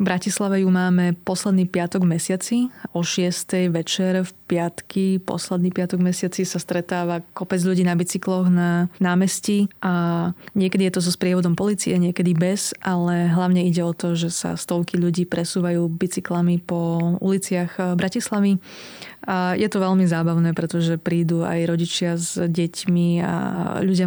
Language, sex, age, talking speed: Slovak, female, 20-39, 145 wpm